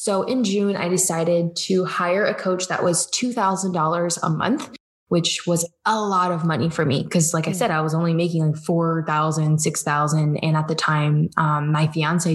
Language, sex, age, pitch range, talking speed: English, female, 20-39, 165-210 Hz, 195 wpm